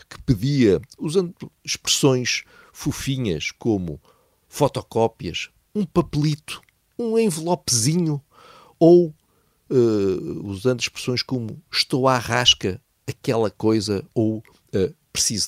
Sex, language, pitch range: male, Portuguese, 95-130 Hz